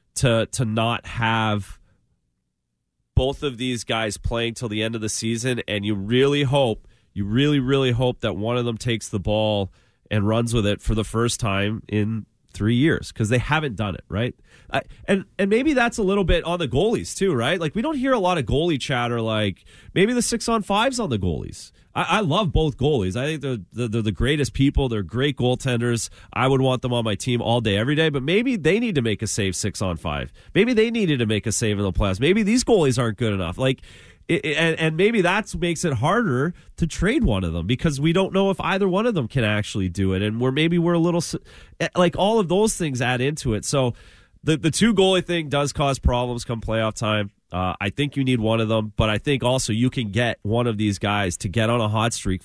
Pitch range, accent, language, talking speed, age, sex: 105-150 Hz, American, English, 235 wpm, 30-49, male